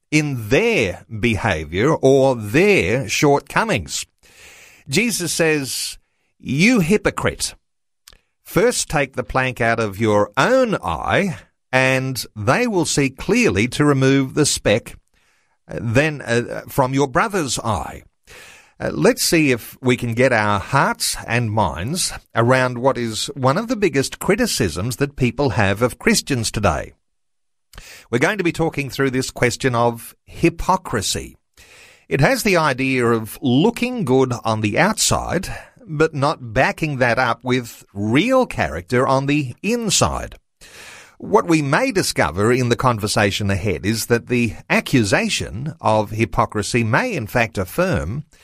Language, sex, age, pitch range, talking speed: English, male, 50-69, 115-150 Hz, 135 wpm